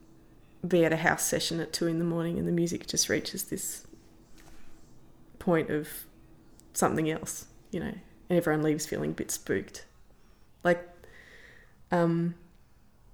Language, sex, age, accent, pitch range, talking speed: English, female, 20-39, Australian, 150-180 Hz, 140 wpm